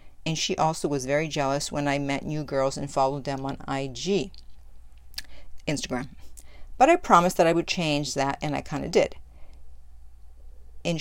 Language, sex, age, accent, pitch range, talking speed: English, female, 50-69, American, 135-180 Hz, 170 wpm